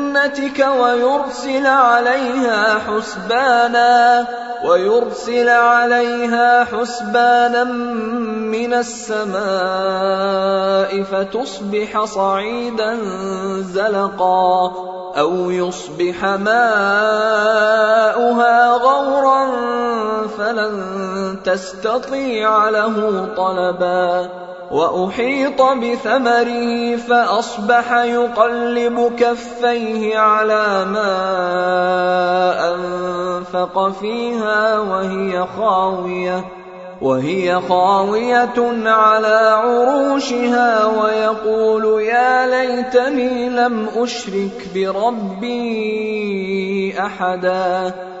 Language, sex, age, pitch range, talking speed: Arabic, male, 20-39, 190-240 Hz, 50 wpm